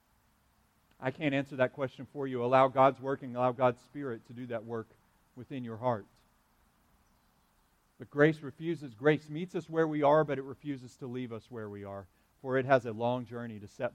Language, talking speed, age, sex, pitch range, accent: English, 200 wpm, 40-59, male, 120-155 Hz, American